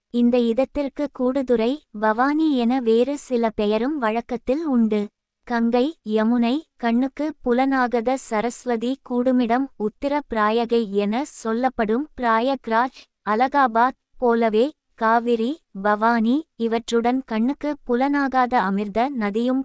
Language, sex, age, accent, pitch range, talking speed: Tamil, female, 20-39, native, 225-260 Hz, 90 wpm